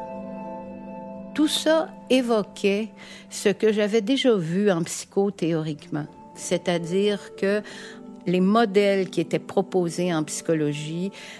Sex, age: female, 60-79